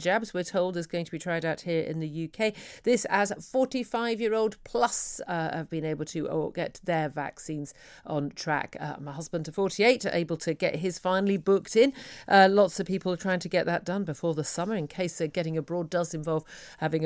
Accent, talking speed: British, 220 wpm